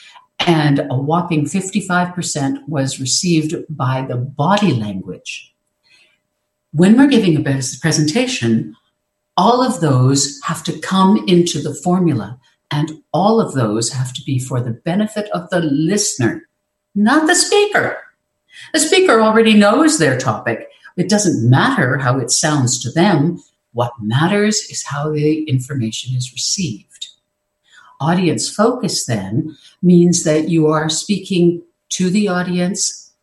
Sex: female